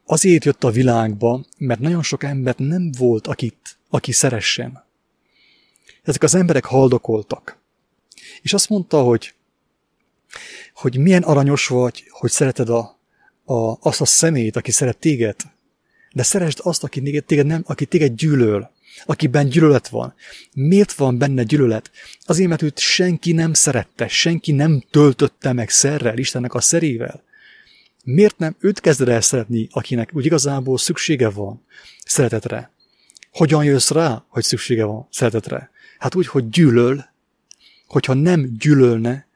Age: 30-49